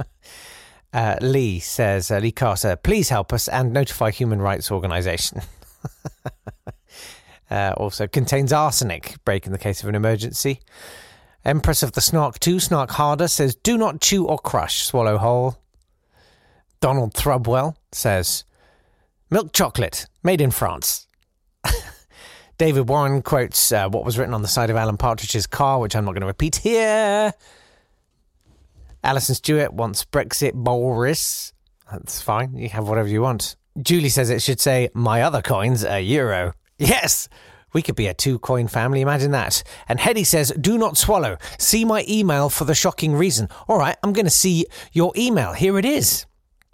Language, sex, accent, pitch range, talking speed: English, male, British, 110-155 Hz, 160 wpm